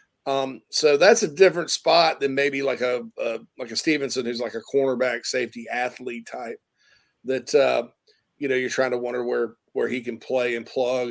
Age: 40-59